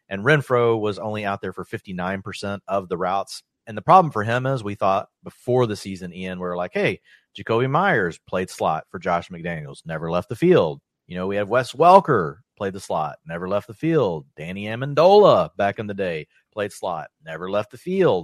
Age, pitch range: 30-49, 95-115 Hz